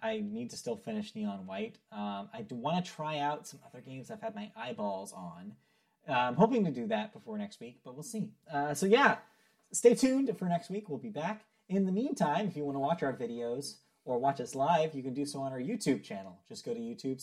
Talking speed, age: 245 wpm, 30-49